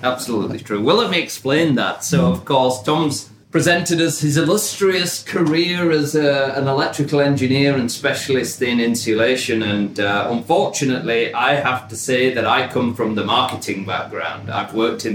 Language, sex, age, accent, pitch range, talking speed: English, male, 30-49, British, 110-135 Hz, 165 wpm